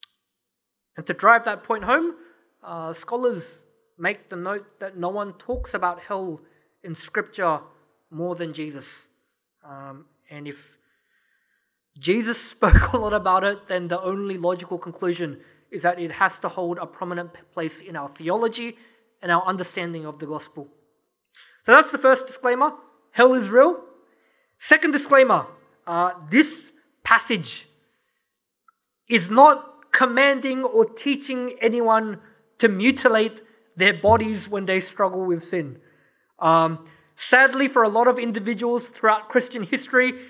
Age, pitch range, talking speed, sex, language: 20-39, 175-255 Hz, 135 wpm, male, English